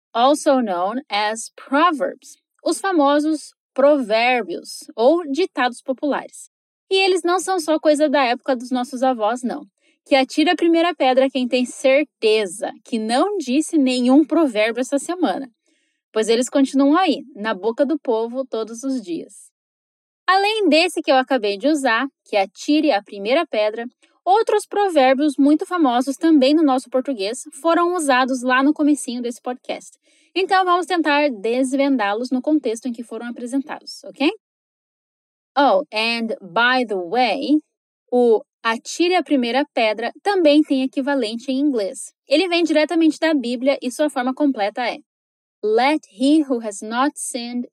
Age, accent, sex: 10-29, Brazilian, female